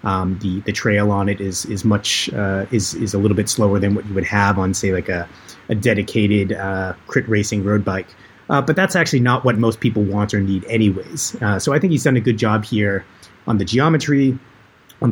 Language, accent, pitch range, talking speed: English, American, 105-125 Hz, 230 wpm